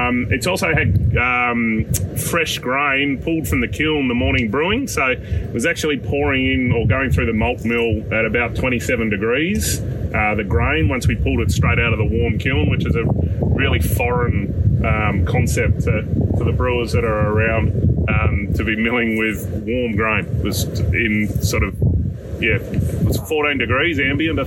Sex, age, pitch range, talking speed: male, 30-49, 105-125 Hz, 185 wpm